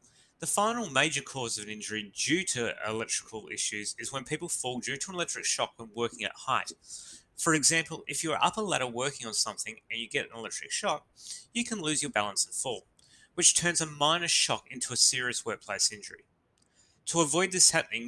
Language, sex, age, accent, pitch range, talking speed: English, male, 30-49, Australian, 115-160 Hz, 205 wpm